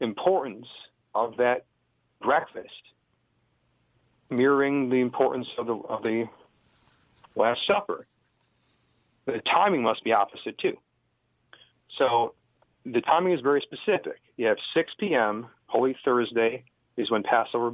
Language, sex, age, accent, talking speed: English, male, 50-69, American, 115 wpm